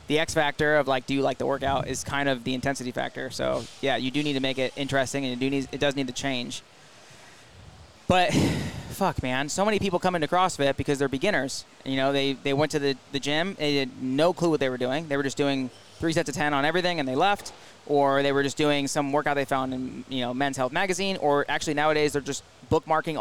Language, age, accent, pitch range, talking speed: English, 20-39, American, 135-160 Hz, 245 wpm